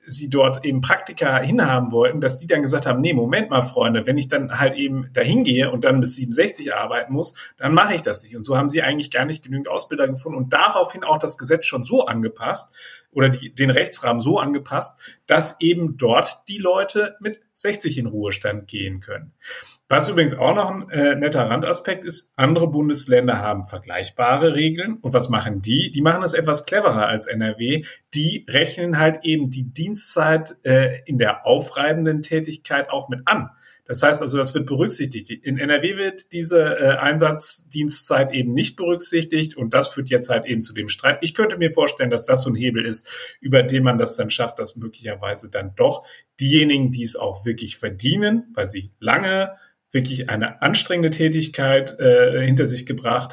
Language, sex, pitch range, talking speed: German, male, 125-160 Hz, 190 wpm